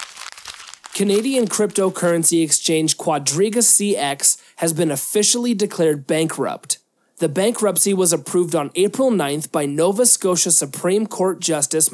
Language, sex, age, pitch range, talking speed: English, male, 30-49, 155-200 Hz, 115 wpm